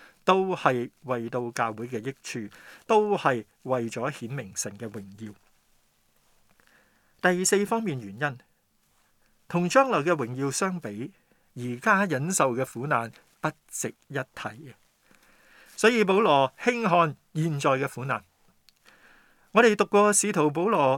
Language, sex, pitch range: Chinese, male, 125-180 Hz